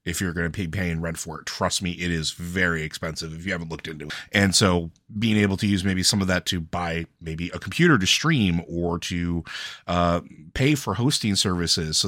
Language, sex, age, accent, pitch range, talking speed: English, male, 30-49, American, 85-110 Hz, 230 wpm